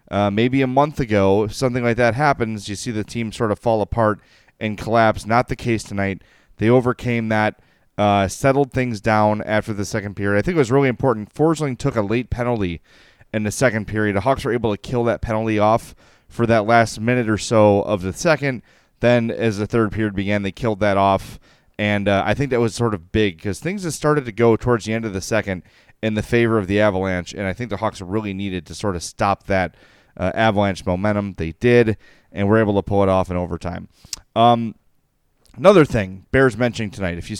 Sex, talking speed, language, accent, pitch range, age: male, 225 wpm, English, American, 100-120 Hz, 30-49